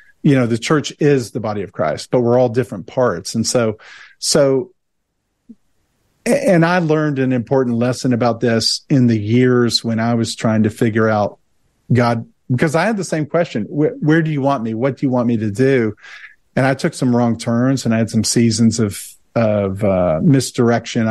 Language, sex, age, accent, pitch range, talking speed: English, male, 50-69, American, 115-145 Hz, 200 wpm